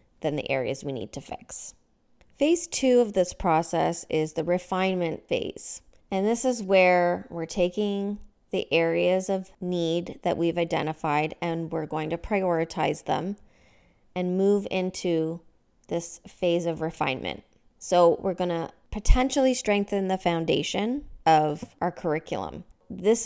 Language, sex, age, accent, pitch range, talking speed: English, female, 20-39, American, 165-195 Hz, 135 wpm